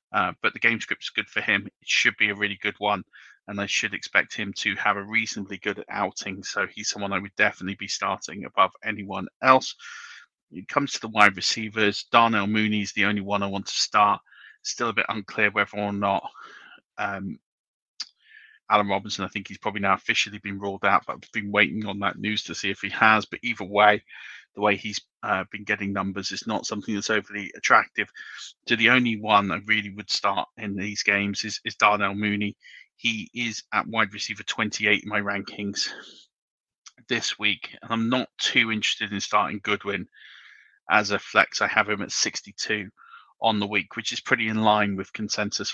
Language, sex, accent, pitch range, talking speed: English, male, British, 100-110 Hz, 200 wpm